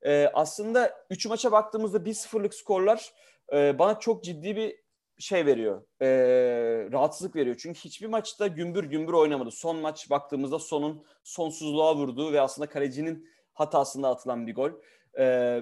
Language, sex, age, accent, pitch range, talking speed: Turkish, male, 30-49, native, 140-190 Hz, 145 wpm